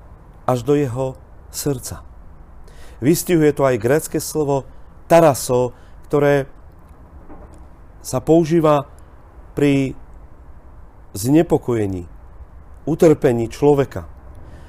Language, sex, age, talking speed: Slovak, male, 40-59, 70 wpm